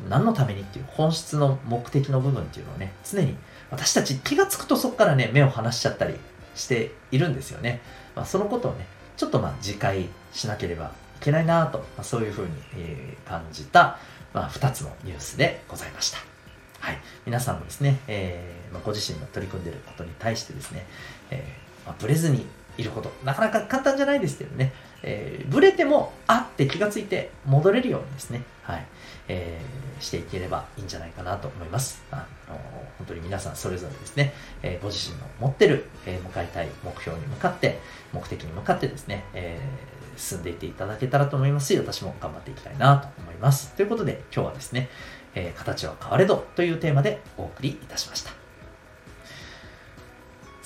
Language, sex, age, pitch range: Japanese, male, 40-59, 100-140 Hz